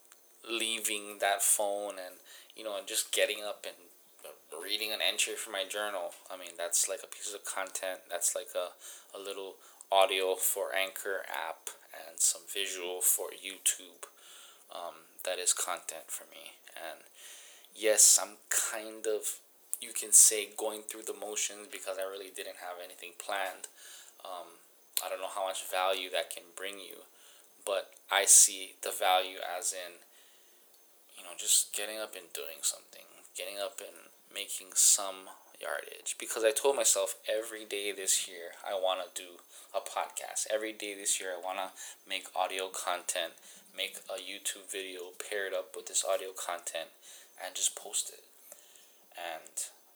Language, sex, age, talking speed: English, male, 20-39, 160 wpm